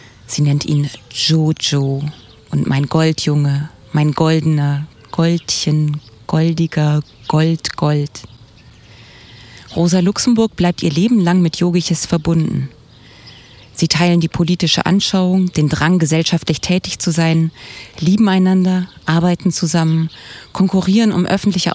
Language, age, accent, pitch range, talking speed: German, 30-49, German, 125-185 Hz, 110 wpm